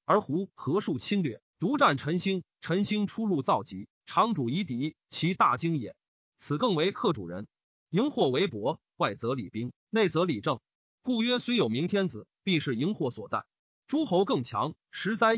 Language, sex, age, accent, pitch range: Chinese, male, 30-49, native, 155-225 Hz